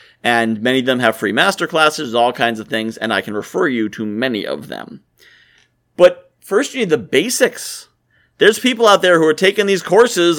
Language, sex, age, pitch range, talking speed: English, male, 40-59, 120-170 Hz, 200 wpm